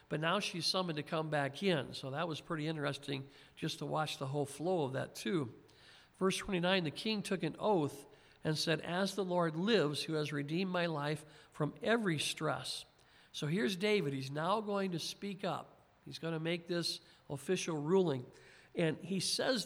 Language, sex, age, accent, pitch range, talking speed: English, male, 50-69, American, 145-180 Hz, 185 wpm